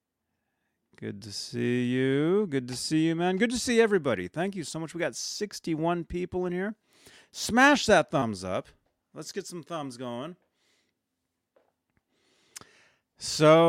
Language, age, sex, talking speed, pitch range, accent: English, 30-49, male, 145 wpm, 125-175 Hz, American